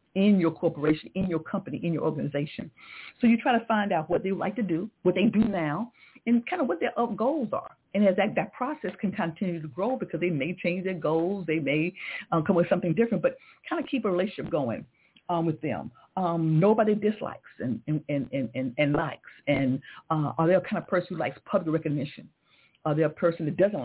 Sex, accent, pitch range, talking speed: female, American, 150-190 Hz, 235 wpm